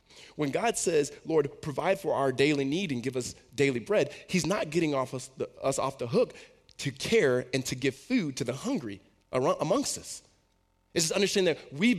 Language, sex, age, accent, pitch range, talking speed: English, male, 20-39, American, 100-150 Hz, 185 wpm